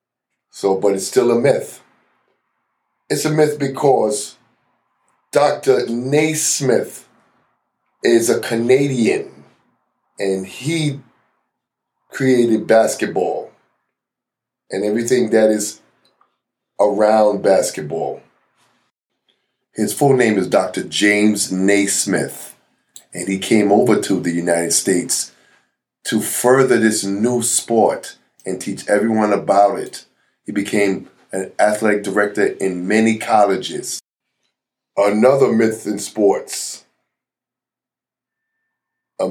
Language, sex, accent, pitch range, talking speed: English, male, American, 105-130 Hz, 95 wpm